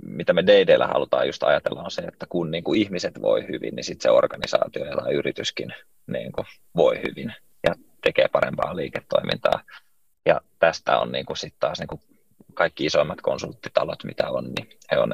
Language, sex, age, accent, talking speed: Finnish, male, 30-49, native, 170 wpm